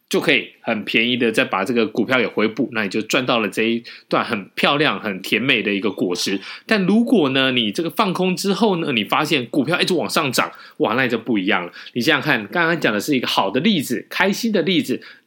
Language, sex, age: Chinese, male, 20-39